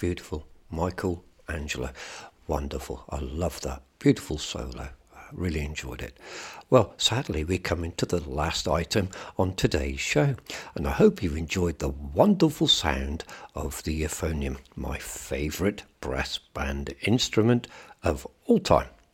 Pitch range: 70-90 Hz